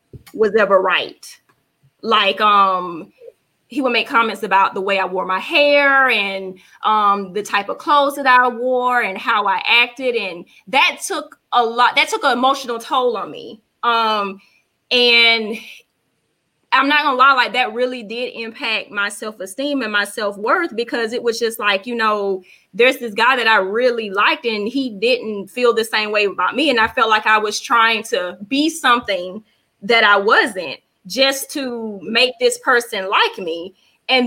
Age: 20-39